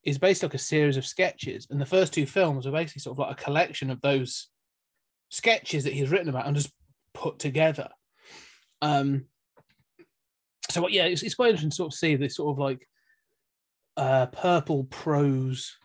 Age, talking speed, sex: 20-39, 180 wpm, male